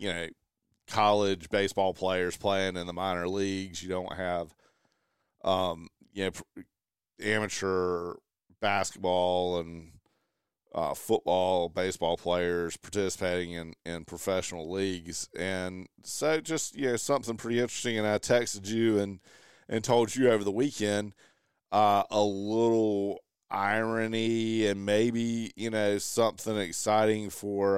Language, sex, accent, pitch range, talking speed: English, male, American, 95-110 Hz, 125 wpm